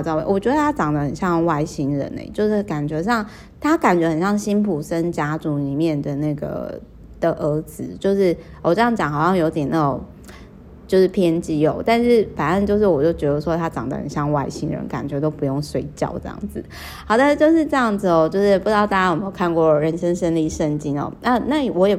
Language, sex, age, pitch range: Chinese, female, 20-39, 155-190 Hz